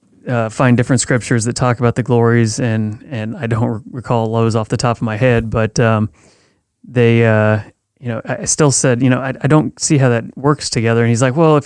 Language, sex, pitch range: English, male, 115-135 Hz